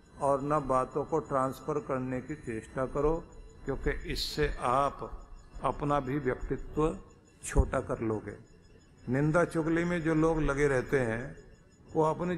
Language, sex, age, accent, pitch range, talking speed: Hindi, male, 50-69, native, 125-165 Hz, 135 wpm